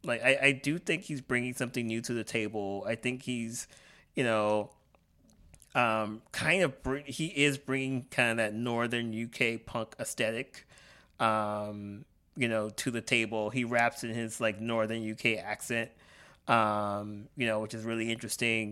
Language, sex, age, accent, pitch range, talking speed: English, male, 30-49, American, 115-140 Hz, 165 wpm